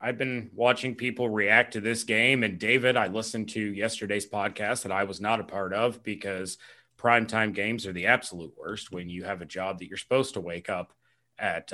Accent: American